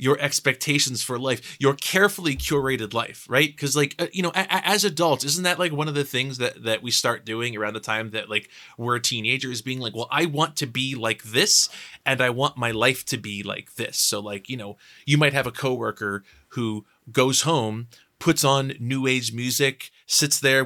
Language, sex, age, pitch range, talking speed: English, male, 20-39, 120-145 Hz, 210 wpm